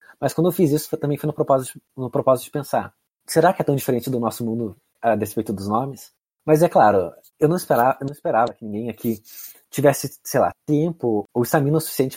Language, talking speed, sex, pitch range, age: Portuguese, 220 wpm, male, 125-155 Hz, 20-39